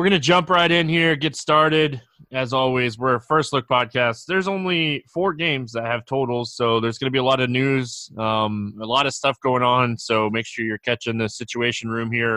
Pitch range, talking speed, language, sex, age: 115-140 Hz, 235 wpm, English, male, 20-39